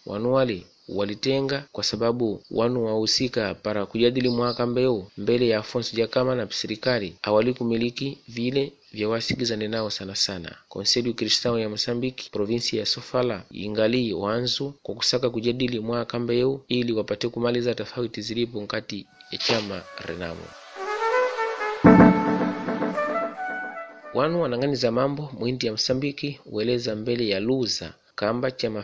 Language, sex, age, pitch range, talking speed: Portuguese, male, 30-49, 105-125 Hz, 120 wpm